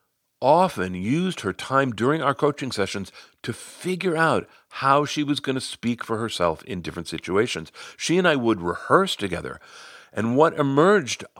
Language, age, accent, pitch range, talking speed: English, 50-69, American, 100-145 Hz, 165 wpm